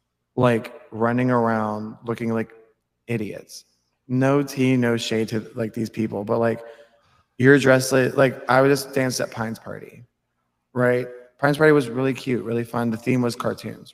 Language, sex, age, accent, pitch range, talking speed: English, male, 20-39, American, 110-145 Hz, 165 wpm